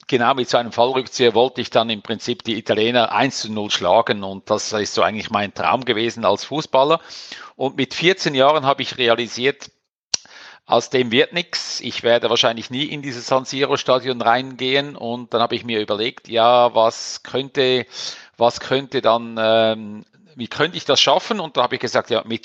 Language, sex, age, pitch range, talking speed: German, male, 50-69, 115-140 Hz, 190 wpm